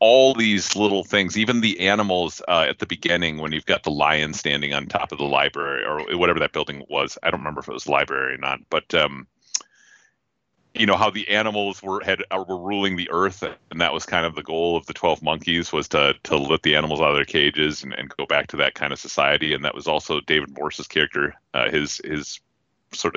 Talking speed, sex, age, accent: 230 wpm, male, 30-49, American